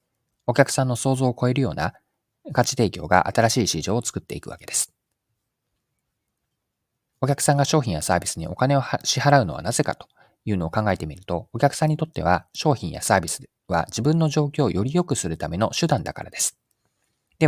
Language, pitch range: Japanese, 95-135 Hz